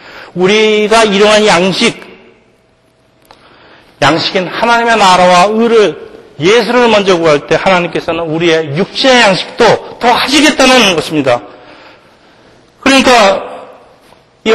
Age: 40-59